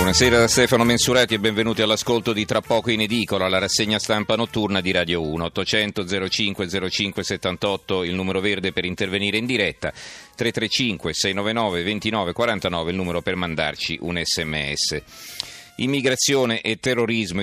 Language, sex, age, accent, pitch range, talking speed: Italian, male, 40-59, native, 90-110 Hz, 125 wpm